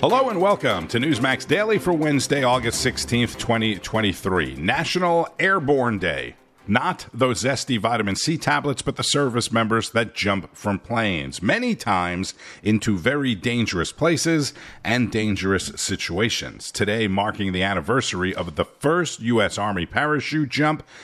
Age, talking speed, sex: 50-69, 135 wpm, male